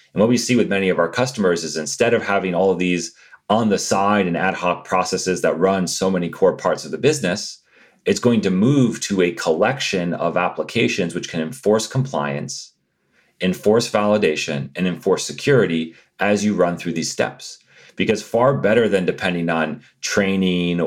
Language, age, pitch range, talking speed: English, 30-49, 85-105 Hz, 180 wpm